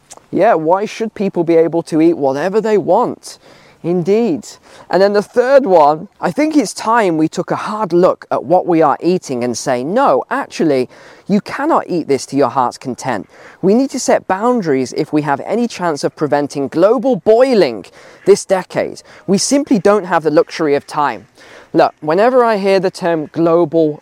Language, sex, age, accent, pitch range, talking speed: English, male, 20-39, British, 140-185 Hz, 185 wpm